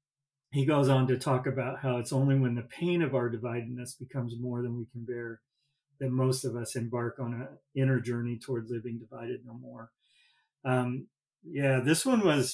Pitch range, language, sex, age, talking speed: 120-135 Hz, English, male, 40-59, 190 wpm